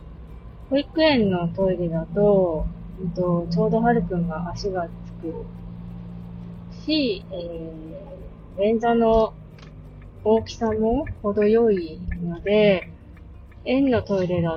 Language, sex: Japanese, female